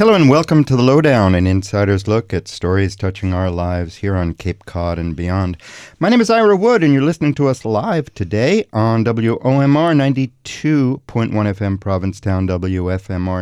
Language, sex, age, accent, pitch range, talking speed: English, male, 50-69, American, 95-130 Hz, 170 wpm